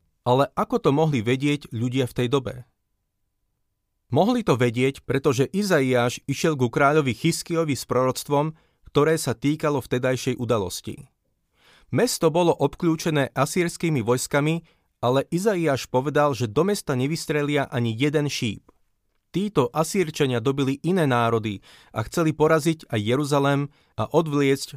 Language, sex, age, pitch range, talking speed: Slovak, male, 30-49, 120-155 Hz, 125 wpm